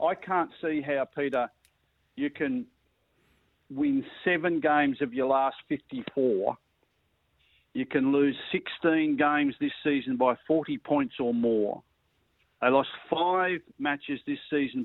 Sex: male